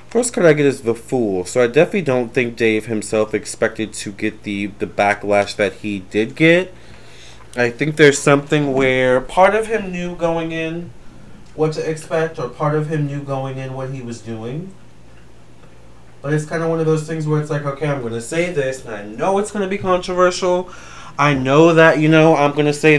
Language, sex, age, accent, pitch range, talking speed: English, male, 30-49, American, 110-145 Hz, 215 wpm